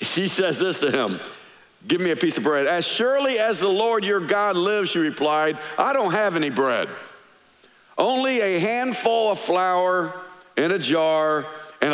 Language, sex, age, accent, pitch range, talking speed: English, male, 50-69, American, 170-240 Hz, 175 wpm